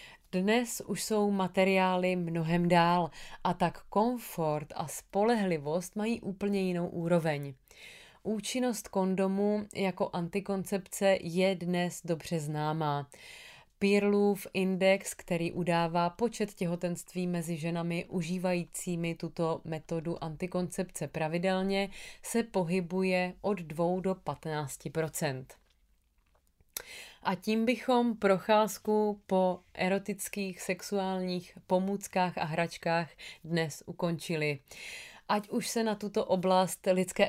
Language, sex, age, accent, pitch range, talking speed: Czech, female, 30-49, native, 170-200 Hz, 100 wpm